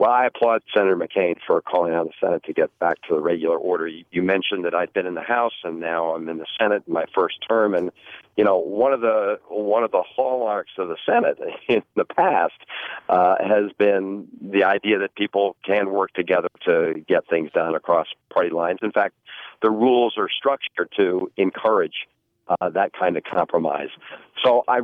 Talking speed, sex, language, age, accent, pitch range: 200 wpm, male, English, 50-69, American, 95-130 Hz